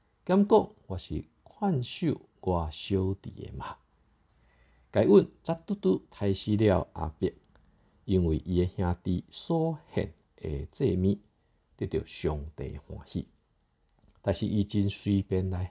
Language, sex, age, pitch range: Chinese, male, 50-69, 80-105 Hz